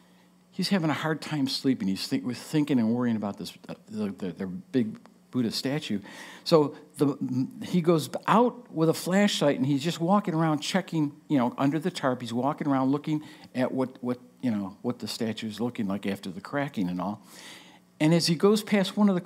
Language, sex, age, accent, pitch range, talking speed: English, male, 60-79, American, 145-200 Hz, 205 wpm